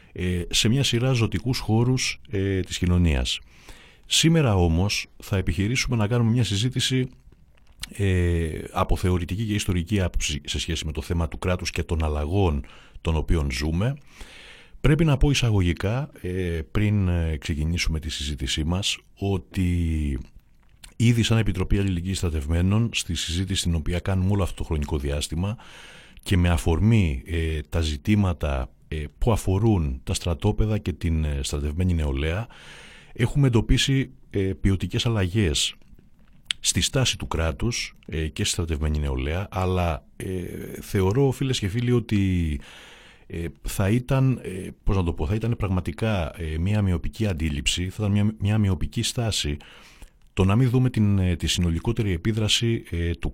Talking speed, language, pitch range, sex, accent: 130 wpm, Greek, 80-110 Hz, male, native